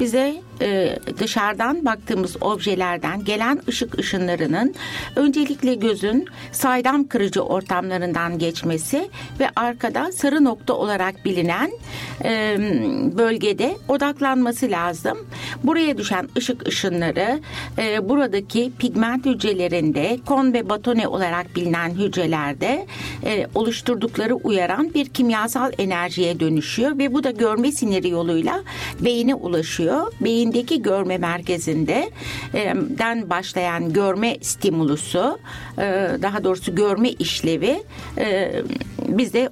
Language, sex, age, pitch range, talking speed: Turkish, female, 60-79, 180-255 Hz, 95 wpm